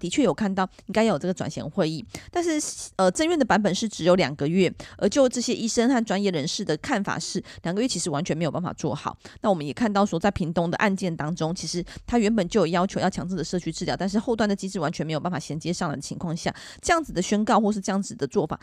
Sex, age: female, 20-39